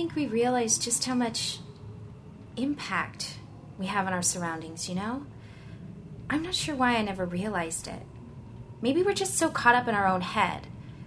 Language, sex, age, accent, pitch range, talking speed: English, female, 20-39, American, 170-230 Hz, 180 wpm